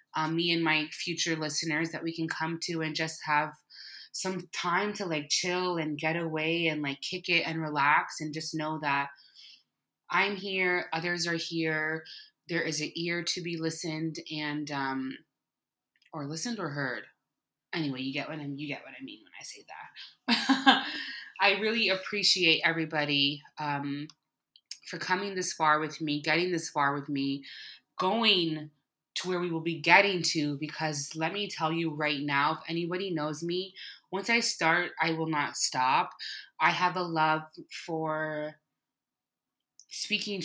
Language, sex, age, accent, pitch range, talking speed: English, female, 20-39, American, 150-180 Hz, 165 wpm